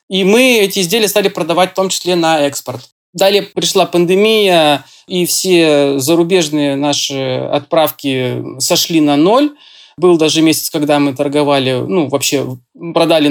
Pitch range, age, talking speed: 150-200 Hz, 20-39, 140 wpm